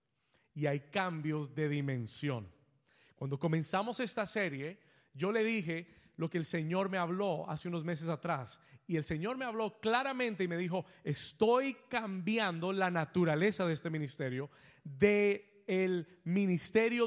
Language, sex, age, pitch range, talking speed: Spanish, male, 30-49, 160-220 Hz, 145 wpm